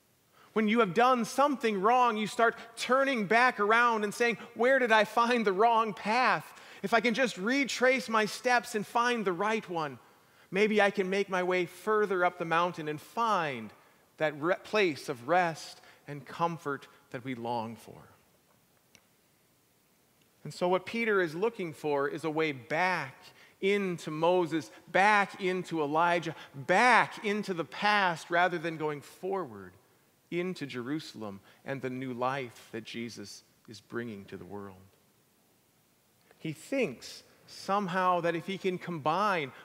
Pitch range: 150-210 Hz